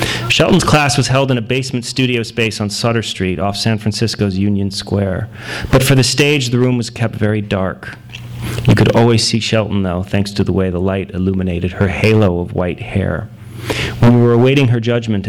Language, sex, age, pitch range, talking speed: English, male, 30-49, 95-120 Hz, 200 wpm